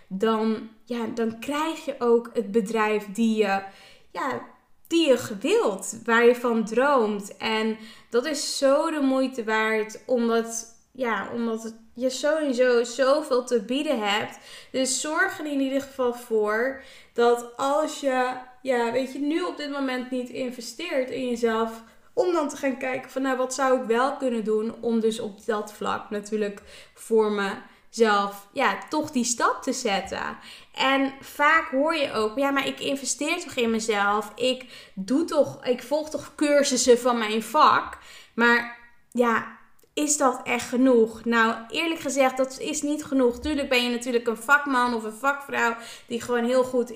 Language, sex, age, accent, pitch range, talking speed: Dutch, female, 10-29, Dutch, 225-275 Hz, 160 wpm